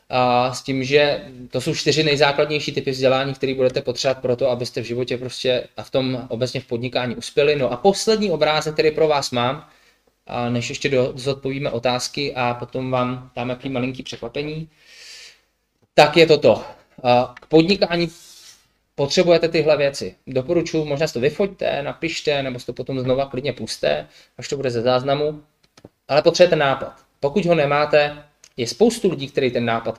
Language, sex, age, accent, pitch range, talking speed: Czech, male, 20-39, native, 125-155 Hz, 170 wpm